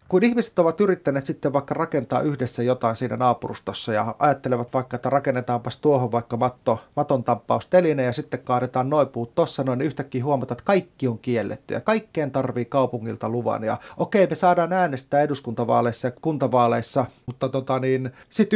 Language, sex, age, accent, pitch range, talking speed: English, male, 30-49, Finnish, 120-150 Hz, 170 wpm